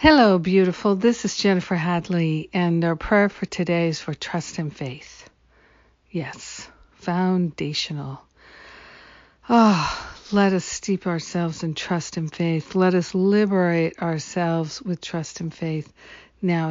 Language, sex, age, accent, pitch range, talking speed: English, female, 60-79, American, 165-190 Hz, 125 wpm